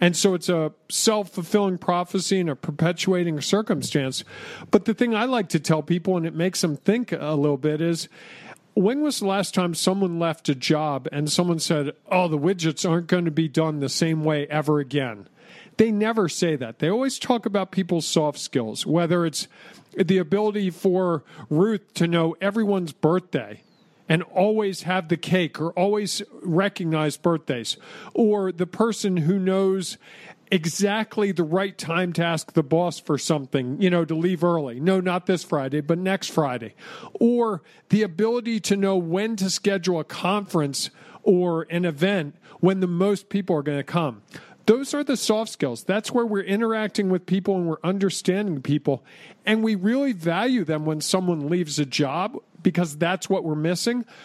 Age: 50-69